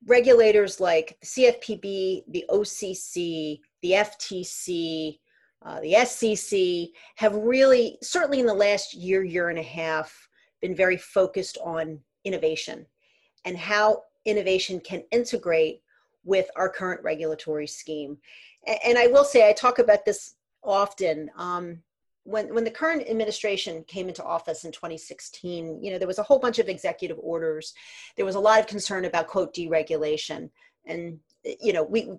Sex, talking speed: female, 150 wpm